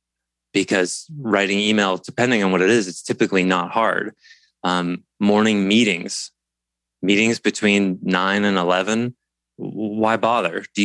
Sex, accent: male, American